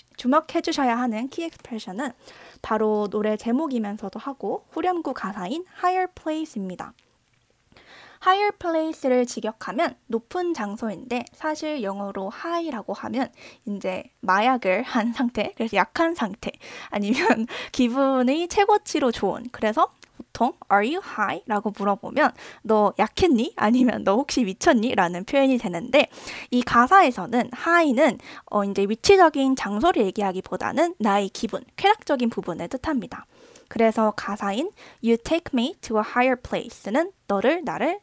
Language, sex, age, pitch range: Korean, female, 20-39, 210-310 Hz